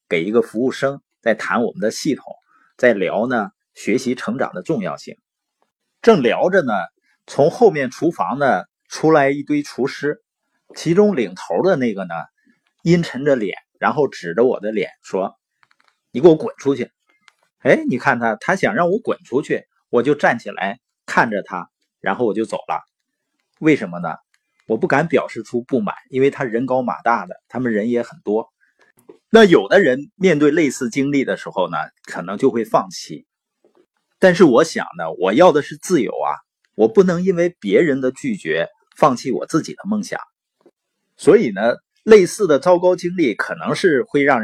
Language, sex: Chinese, male